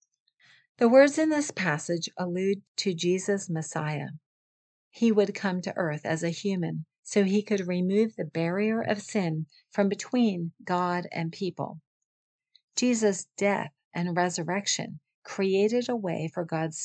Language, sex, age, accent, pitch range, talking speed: English, female, 50-69, American, 165-210 Hz, 140 wpm